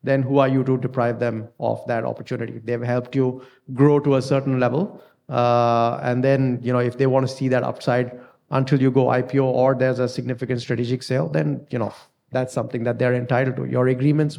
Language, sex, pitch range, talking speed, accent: English, male, 125-140 Hz, 215 wpm, Indian